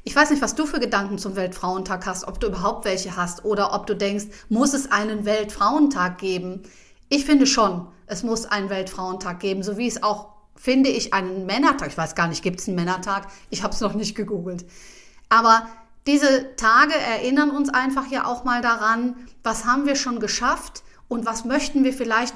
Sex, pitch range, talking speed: female, 205-255 Hz, 200 wpm